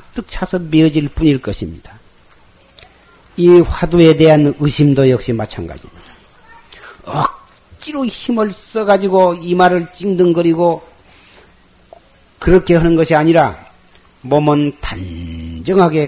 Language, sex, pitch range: Korean, male, 125-165 Hz